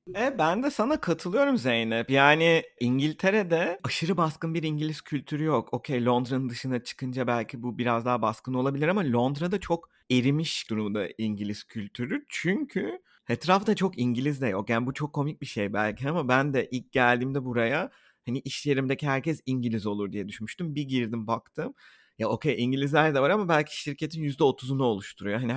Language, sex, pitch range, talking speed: Turkish, male, 120-155 Hz, 170 wpm